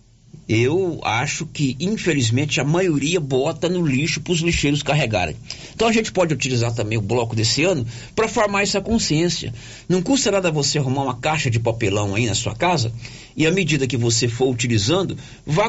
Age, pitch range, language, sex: 50-69, 120-170 Hz, Portuguese, male